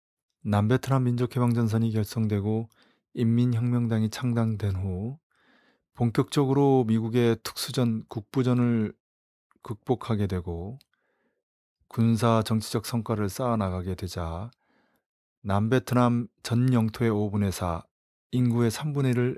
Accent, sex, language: native, male, Korean